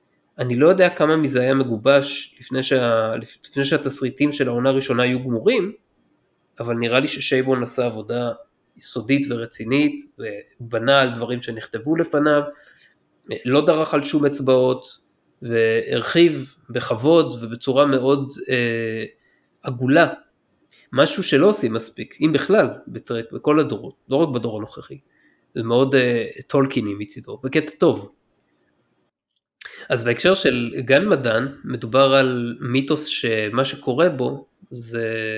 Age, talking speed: 20-39, 120 wpm